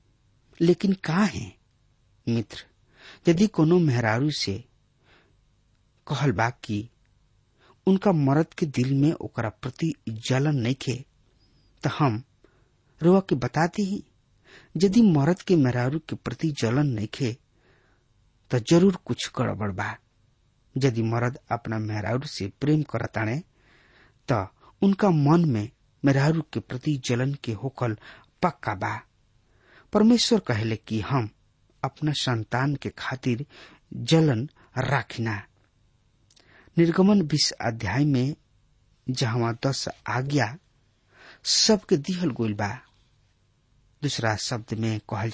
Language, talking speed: English, 105 wpm